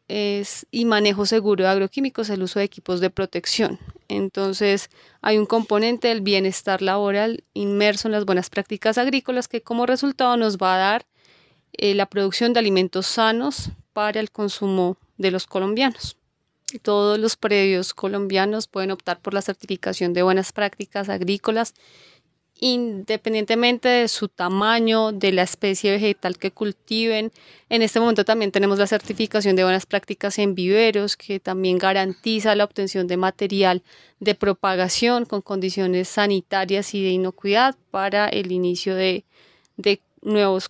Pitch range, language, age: 190-220 Hz, Spanish, 20-39